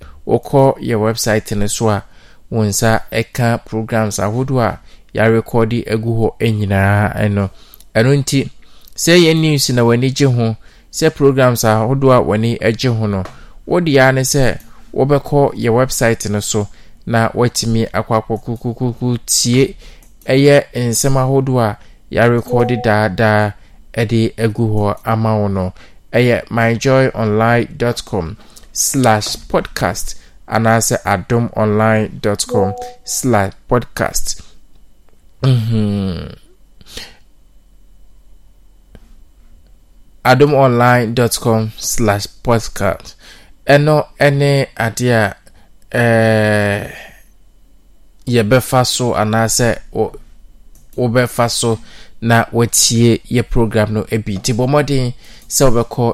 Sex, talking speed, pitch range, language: male, 95 wpm, 105-125 Hz, English